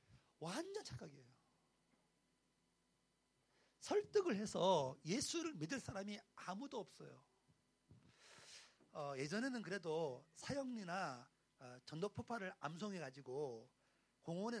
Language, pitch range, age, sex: Korean, 160-245 Hz, 40-59, male